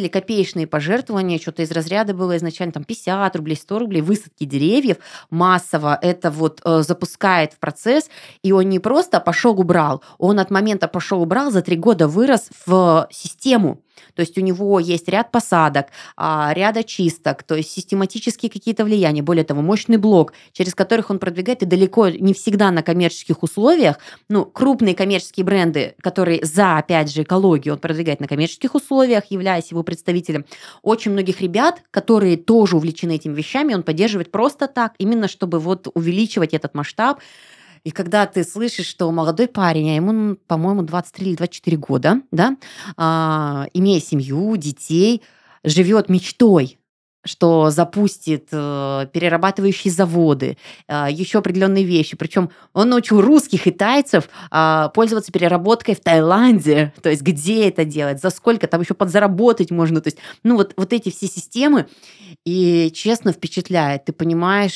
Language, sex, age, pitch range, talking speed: Russian, female, 20-39, 165-205 Hz, 155 wpm